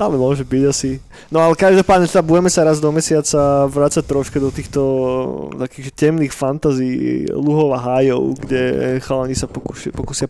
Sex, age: male, 20-39